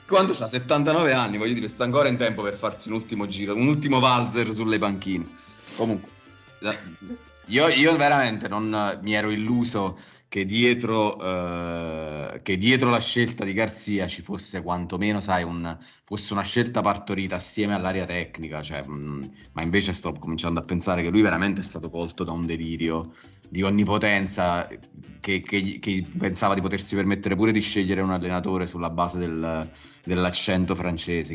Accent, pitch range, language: native, 90-110 Hz, Italian